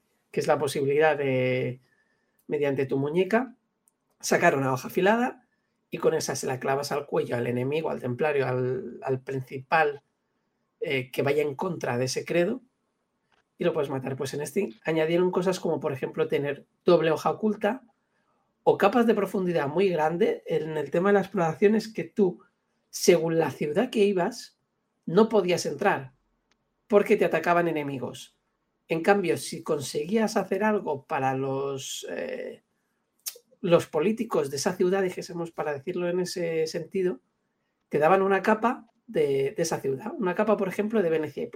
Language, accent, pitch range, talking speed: Spanish, Spanish, 150-215 Hz, 160 wpm